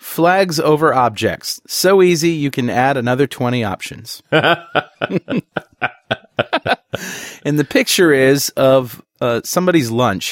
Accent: American